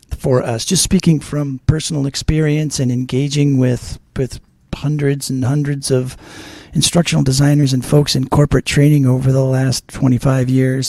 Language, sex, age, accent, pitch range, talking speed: English, male, 40-59, American, 120-145 Hz, 150 wpm